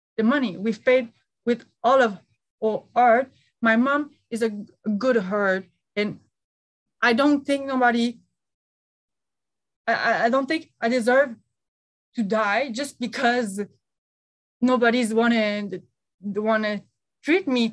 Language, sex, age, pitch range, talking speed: English, female, 20-39, 210-255 Hz, 120 wpm